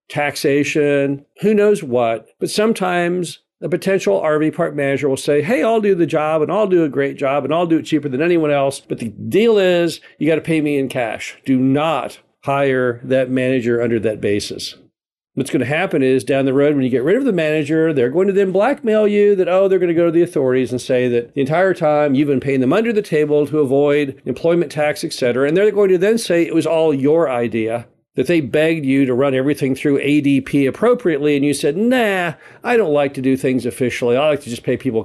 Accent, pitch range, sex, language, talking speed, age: American, 135-170 Hz, male, English, 235 wpm, 50-69